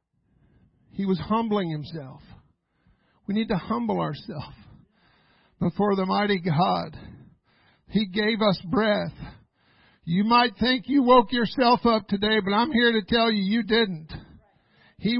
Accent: American